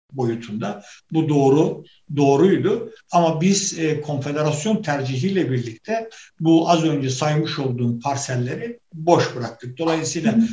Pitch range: 130-170 Hz